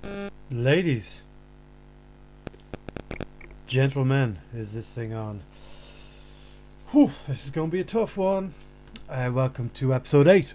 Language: English